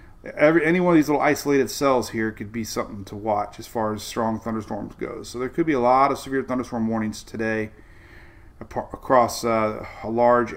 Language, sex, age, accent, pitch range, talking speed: English, male, 40-59, American, 105-135 Hz, 205 wpm